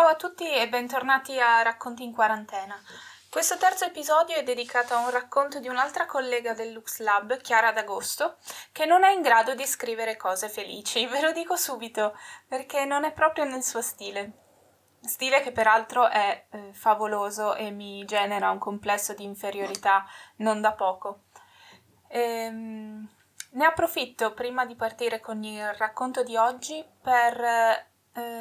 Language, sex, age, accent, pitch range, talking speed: Italian, female, 20-39, native, 220-270 Hz, 155 wpm